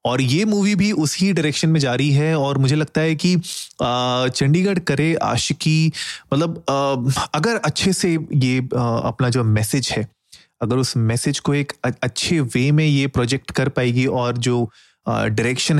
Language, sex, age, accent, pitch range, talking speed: Hindi, male, 30-49, native, 115-150 Hz, 160 wpm